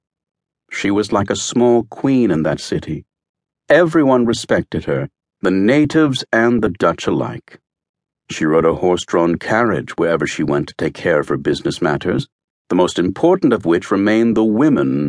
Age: 60-79